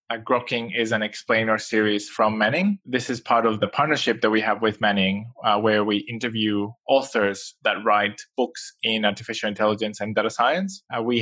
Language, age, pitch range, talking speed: English, 20-39, 105-120 Hz, 185 wpm